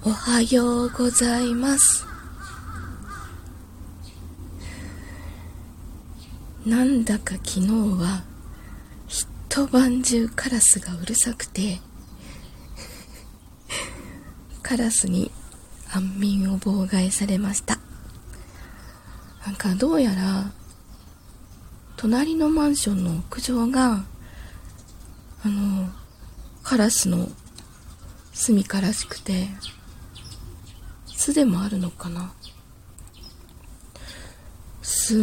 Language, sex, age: Japanese, female, 20-39